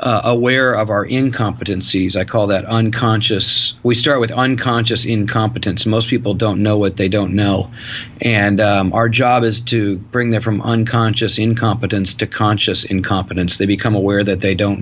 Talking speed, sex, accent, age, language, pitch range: 170 wpm, male, American, 40-59, English, 105-125 Hz